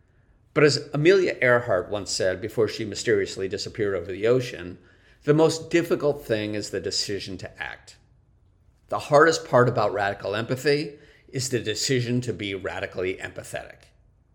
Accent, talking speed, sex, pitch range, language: American, 145 wpm, male, 105-140 Hz, English